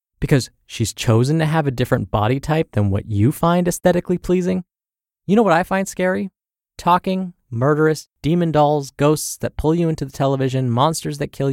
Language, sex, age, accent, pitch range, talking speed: English, male, 20-39, American, 120-165 Hz, 180 wpm